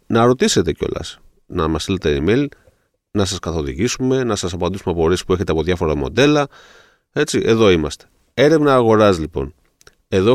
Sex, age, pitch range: male, 30-49, 90-125 Hz